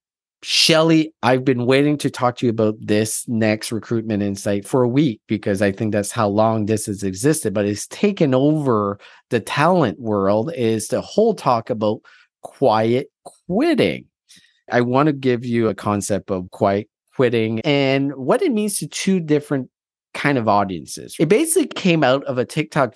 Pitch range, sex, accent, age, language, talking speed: 110-165 Hz, male, American, 30-49, English, 170 wpm